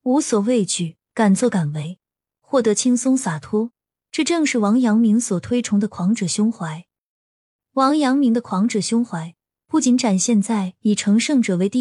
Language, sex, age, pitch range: Chinese, female, 20-39, 190-250 Hz